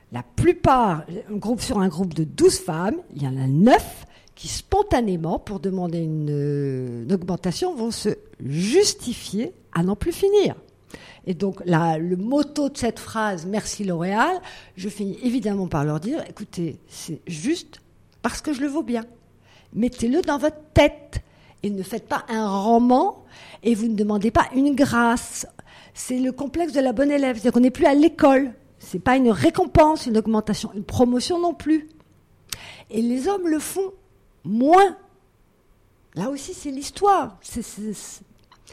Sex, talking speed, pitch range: female, 165 wpm, 195-290 Hz